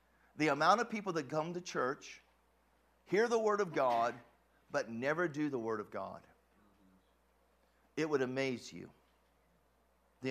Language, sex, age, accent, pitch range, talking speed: English, male, 50-69, American, 120-190 Hz, 145 wpm